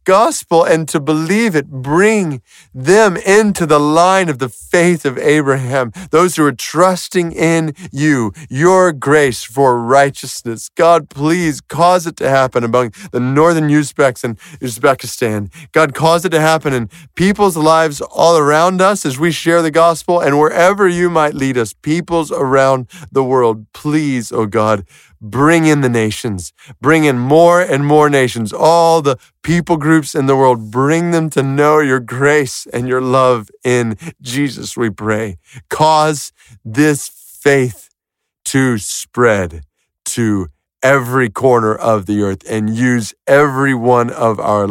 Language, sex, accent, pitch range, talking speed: English, male, American, 115-160 Hz, 150 wpm